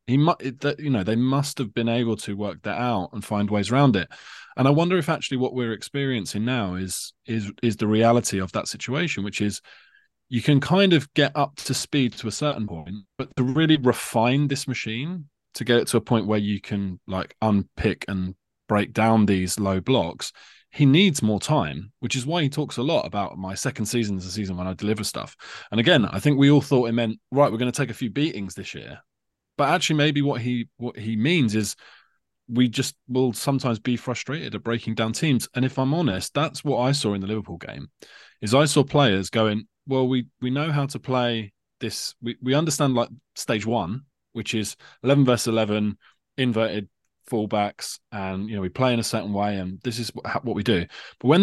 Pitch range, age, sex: 105-135 Hz, 20-39, male